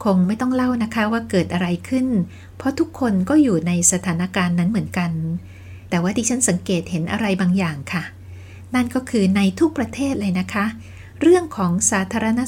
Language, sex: Thai, female